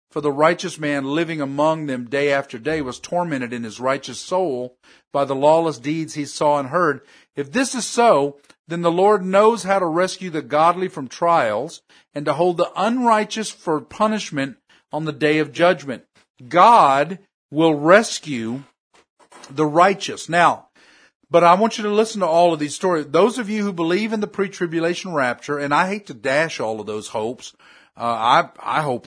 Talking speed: 185 wpm